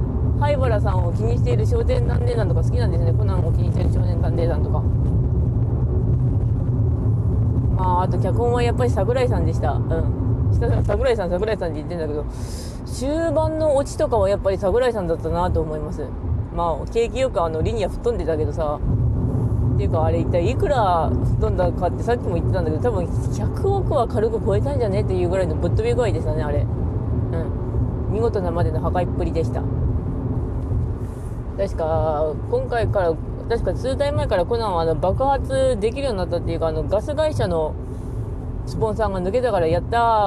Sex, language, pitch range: female, Japanese, 110-125 Hz